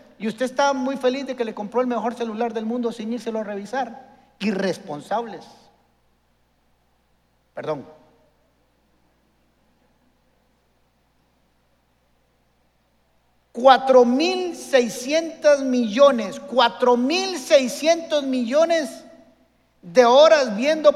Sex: male